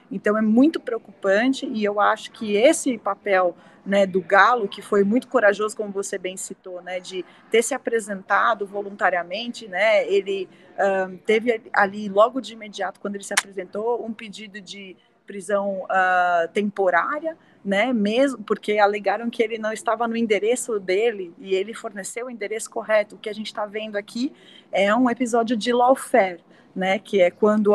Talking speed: 165 wpm